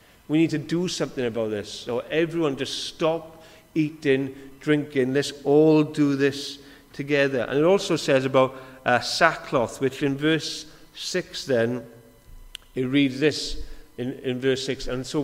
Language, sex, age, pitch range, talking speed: English, male, 40-59, 125-150 Hz, 155 wpm